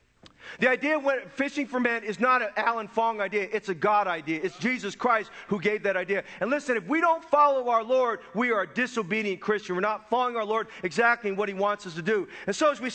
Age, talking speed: 40-59, 245 wpm